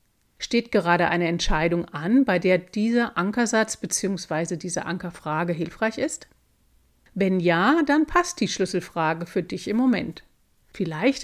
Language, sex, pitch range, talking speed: German, female, 180-255 Hz, 135 wpm